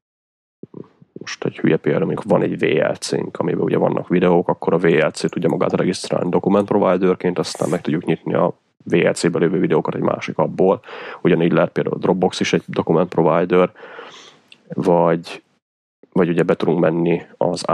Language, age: Hungarian, 20-39